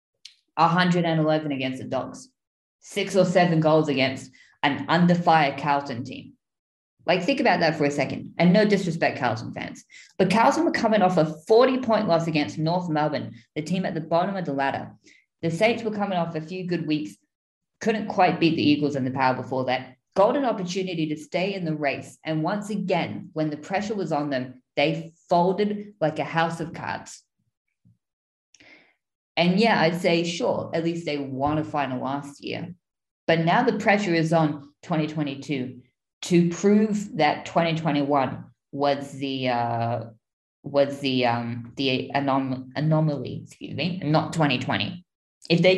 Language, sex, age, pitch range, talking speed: English, female, 20-39, 140-180 Hz, 165 wpm